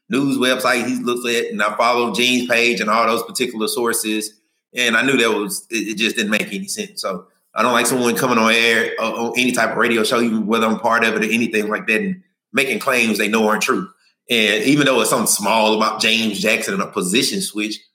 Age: 30-49